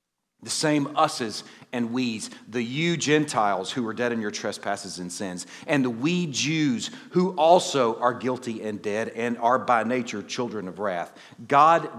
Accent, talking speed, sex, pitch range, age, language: American, 170 wpm, male, 100-135 Hz, 40-59, English